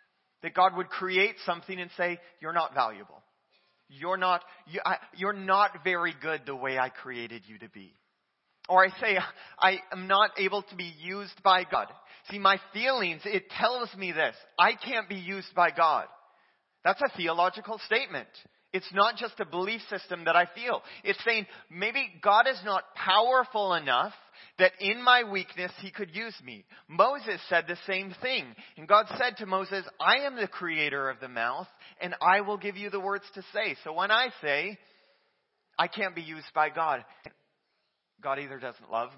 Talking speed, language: 180 wpm, English